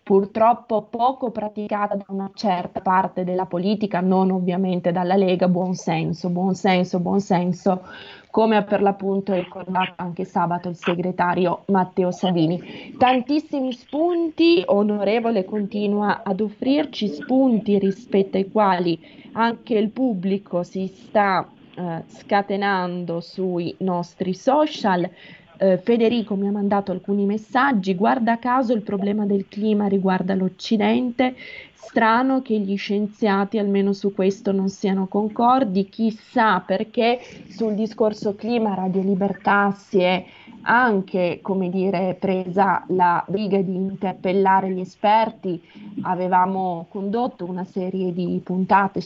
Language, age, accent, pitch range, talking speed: Italian, 20-39, native, 185-215 Hz, 115 wpm